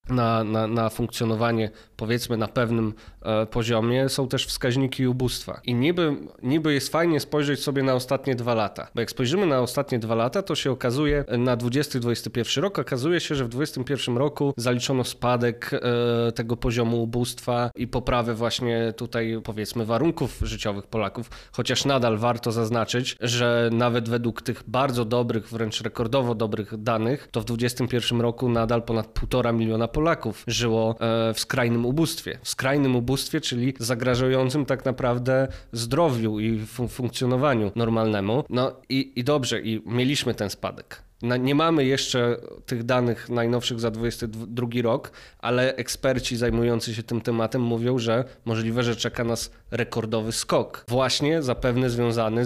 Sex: male